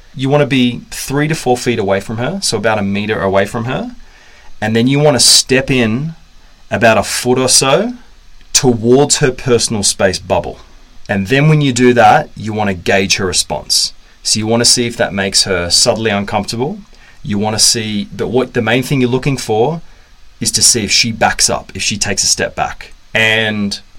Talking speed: 200 wpm